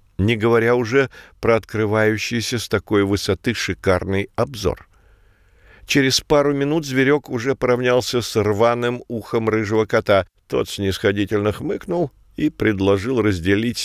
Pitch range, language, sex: 95-125 Hz, Russian, male